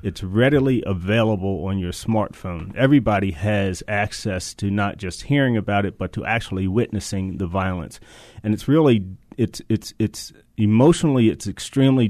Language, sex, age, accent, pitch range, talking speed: English, male, 30-49, American, 100-120 Hz, 150 wpm